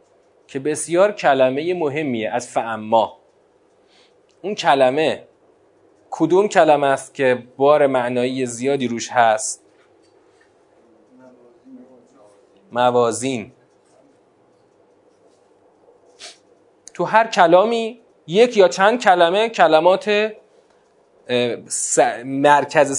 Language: Persian